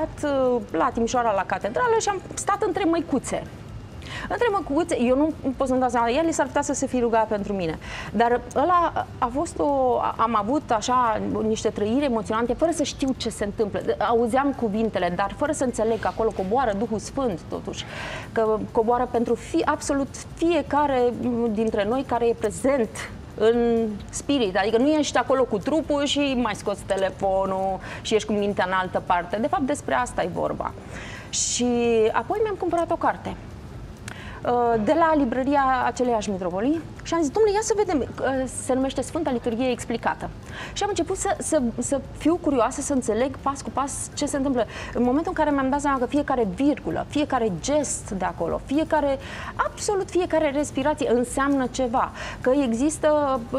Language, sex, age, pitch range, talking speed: Romanian, female, 30-49, 225-290 Hz, 170 wpm